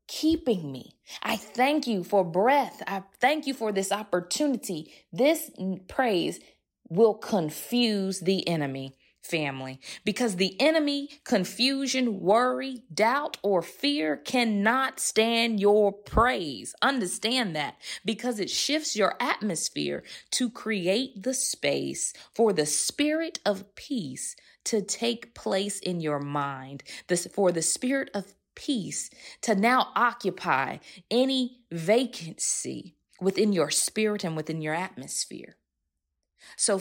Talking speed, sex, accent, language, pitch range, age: 120 wpm, female, American, English, 170-245 Hz, 20-39